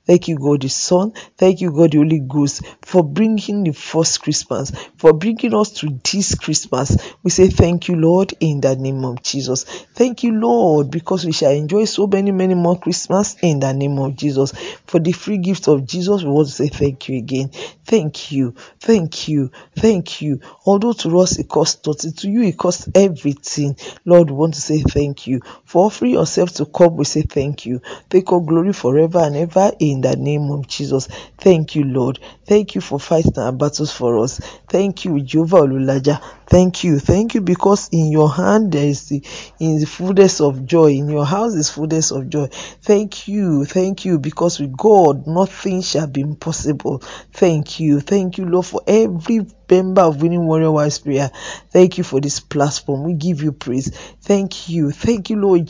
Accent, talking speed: Nigerian, 195 wpm